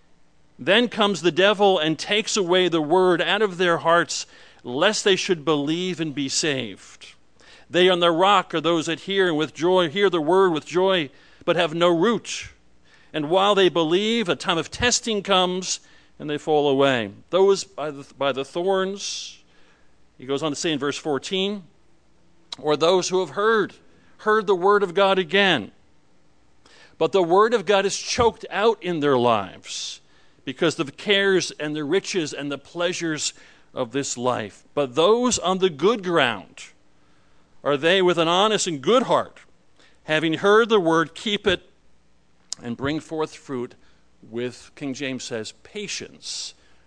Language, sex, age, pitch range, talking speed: English, male, 50-69, 125-190 Hz, 160 wpm